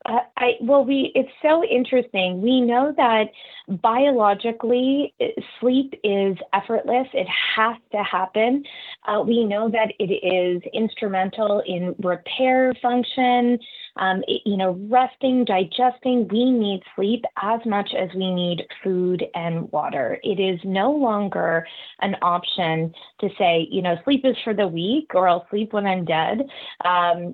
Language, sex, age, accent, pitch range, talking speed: English, female, 20-39, American, 180-255 Hz, 145 wpm